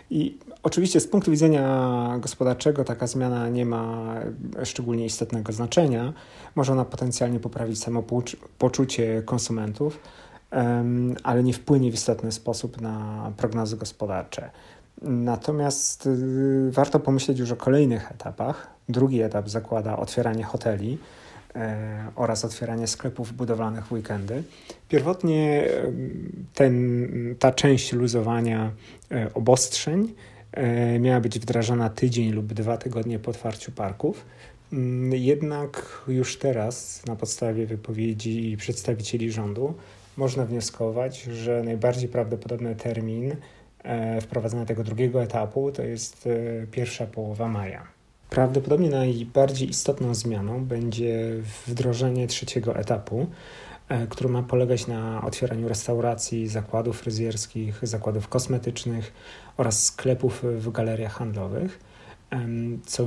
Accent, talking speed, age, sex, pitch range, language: native, 105 wpm, 40-59, male, 115-130 Hz, Polish